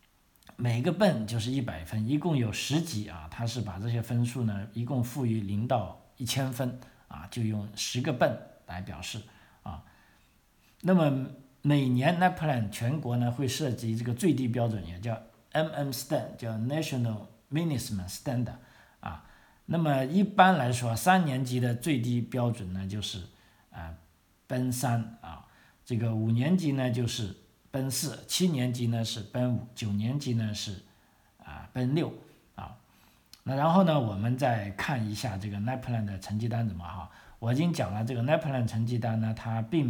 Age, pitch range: 50-69, 105-130 Hz